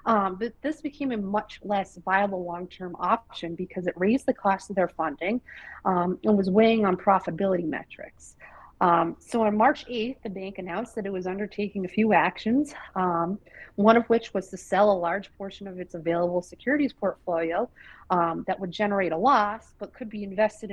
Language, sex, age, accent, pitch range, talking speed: English, female, 40-59, American, 175-220 Hz, 190 wpm